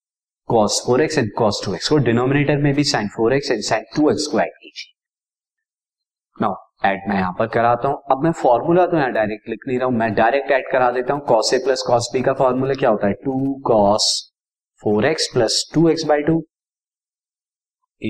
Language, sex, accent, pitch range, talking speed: Hindi, male, native, 110-145 Hz, 125 wpm